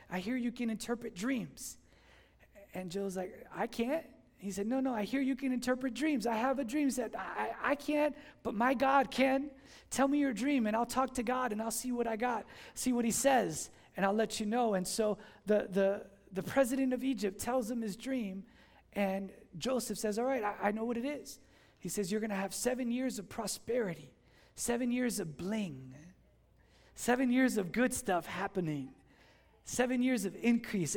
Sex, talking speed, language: male, 205 wpm, English